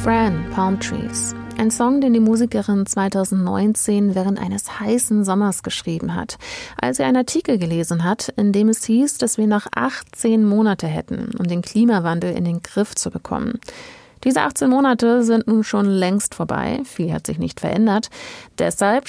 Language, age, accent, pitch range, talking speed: German, 30-49, German, 185-235 Hz, 165 wpm